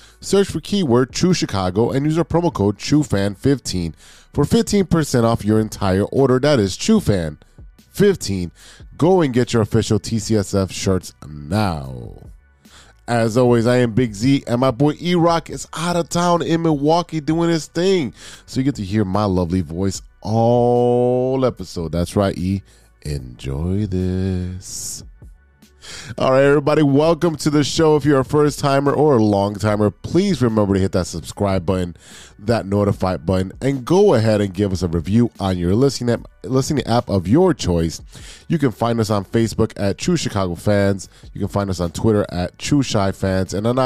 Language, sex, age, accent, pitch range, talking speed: English, male, 20-39, American, 95-140 Hz, 170 wpm